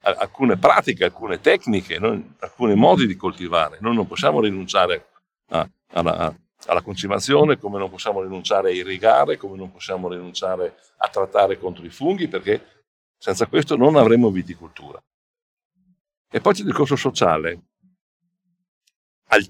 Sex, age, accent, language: male, 60-79, Italian, English